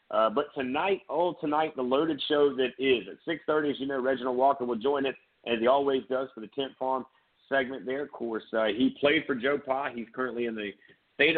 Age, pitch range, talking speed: 50-69, 110-135 Hz, 220 wpm